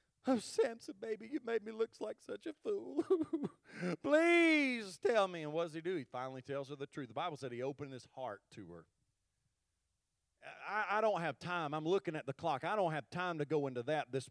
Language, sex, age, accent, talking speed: English, male, 30-49, American, 220 wpm